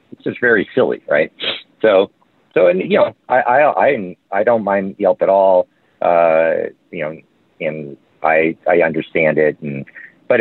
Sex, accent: male, American